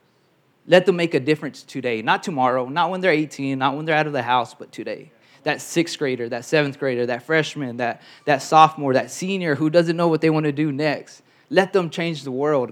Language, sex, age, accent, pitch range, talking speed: English, male, 20-39, American, 135-155 Hz, 225 wpm